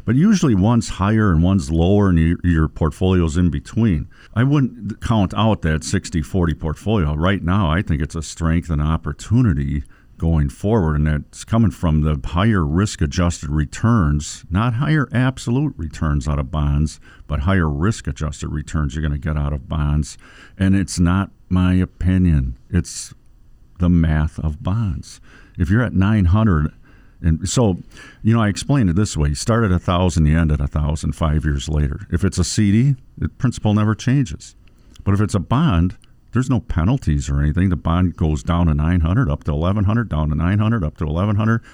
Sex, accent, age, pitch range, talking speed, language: male, American, 50-69, 75-105 Hz, 175 wpm, English